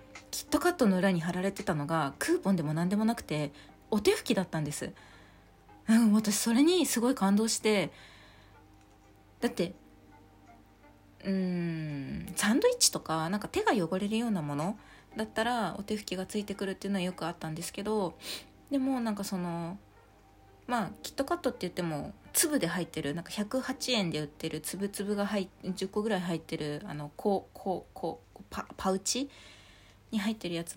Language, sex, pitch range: Japanese, female, 155-230 Hz